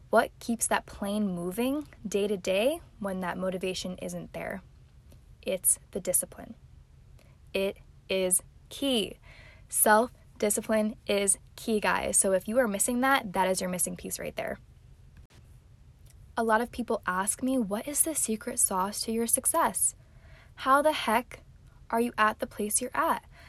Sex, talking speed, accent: female, 155 wpm, American